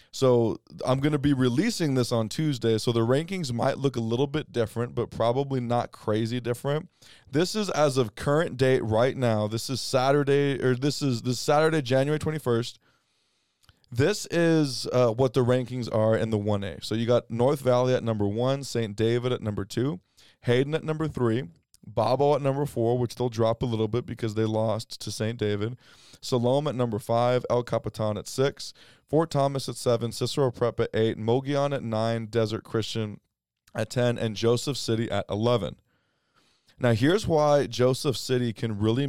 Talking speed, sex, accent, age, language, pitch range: 185 wpm, male, American, 20-39, English, 110-135 Hz